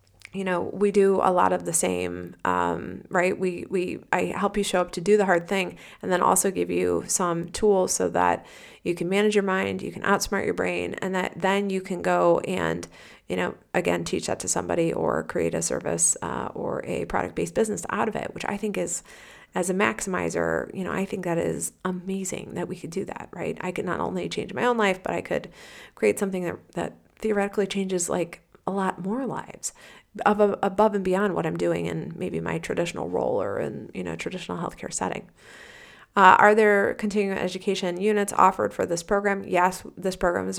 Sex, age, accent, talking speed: female, 30-49, American, 210 wpm